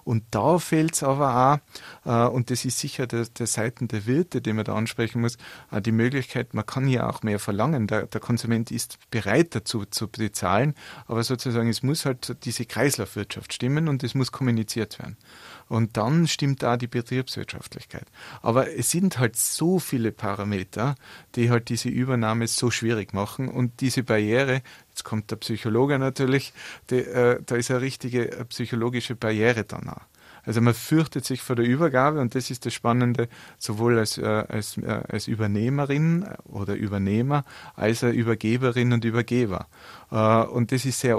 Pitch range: 115-130 Hz